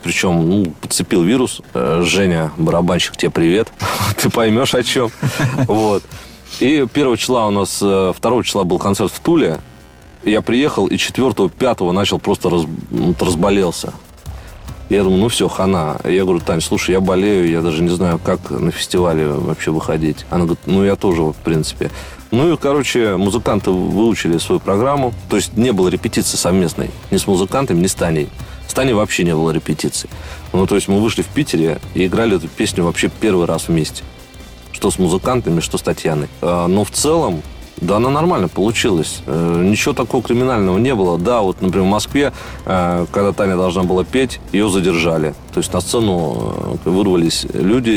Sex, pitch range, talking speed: male, 80-100 Hz, 170 wpm